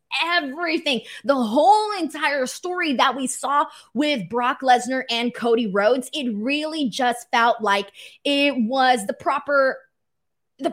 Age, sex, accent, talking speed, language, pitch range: 20-39, female, American, 135 wpm, English, 230-295 Hz